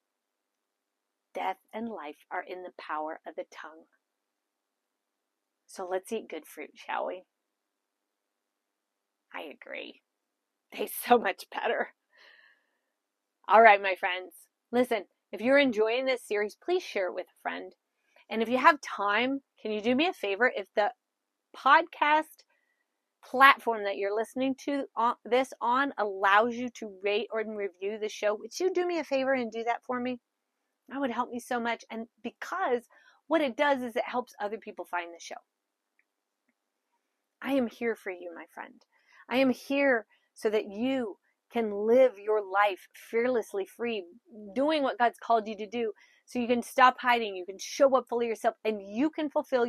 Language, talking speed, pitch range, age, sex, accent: English, 170 wpm, 190-255 Hz, 30-49, female, American